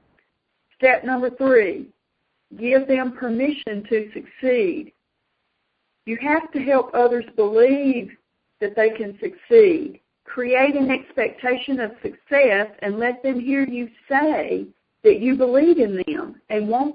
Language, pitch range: English, 225-280 Hz